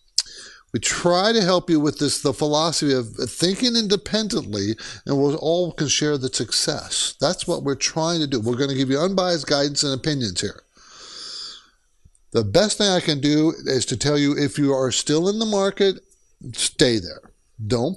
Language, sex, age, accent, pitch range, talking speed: English, male, 50-69, American, 125-165 Hz, 185 wpm